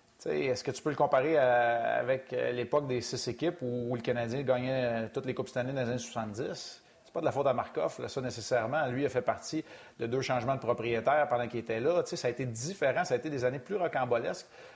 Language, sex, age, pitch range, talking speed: French, male, 30-49, 120-150 Hz, 240 wpm